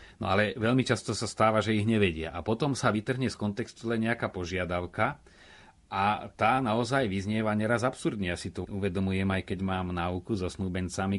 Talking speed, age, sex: 175 wpm, 30-49, male